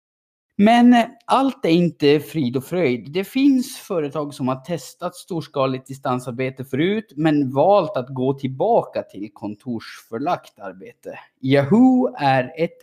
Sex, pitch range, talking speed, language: male, 135-180 Hz, 125 wpm, Swedish